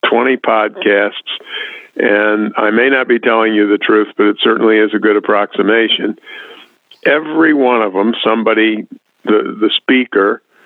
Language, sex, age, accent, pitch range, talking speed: English, male, 50-69, American, 110-165 Hz, 145 wpm